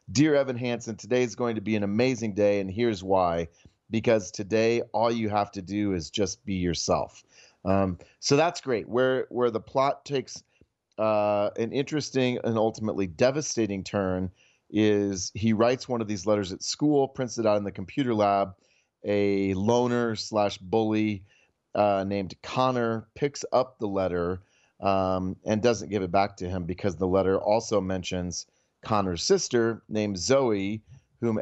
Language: English